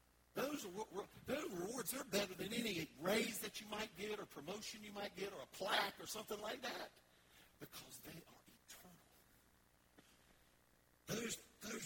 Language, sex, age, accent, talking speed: English, male, 50-69, American, 145 wpm